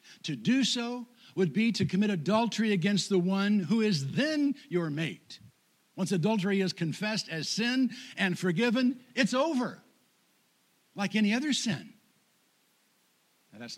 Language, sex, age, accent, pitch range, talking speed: English, male, 60-79, American, 175-230 Hz, 135 wpm